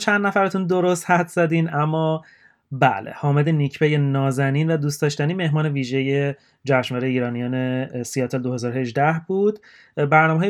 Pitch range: 130-170 Hz